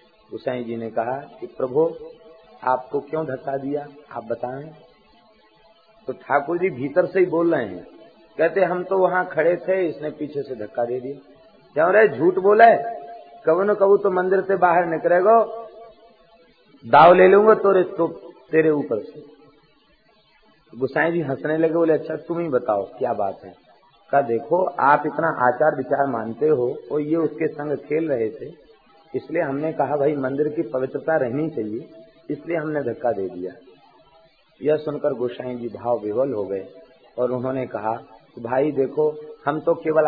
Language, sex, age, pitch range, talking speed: Hindi, male, 50-69, 135-175 Hz, 165 wpm